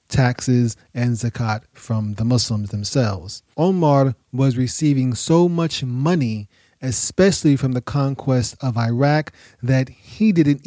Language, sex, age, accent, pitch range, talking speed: English, male, 30-49, American, 120-150 Hz, 125 wpm